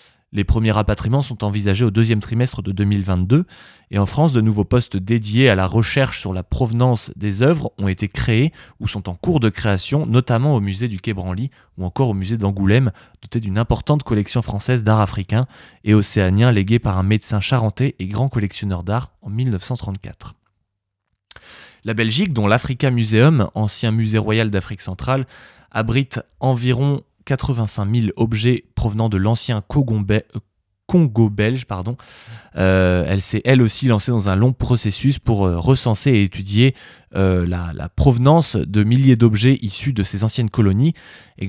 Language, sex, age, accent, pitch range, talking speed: French, male, 20-39, French, 100-125 Hz, 160 wpm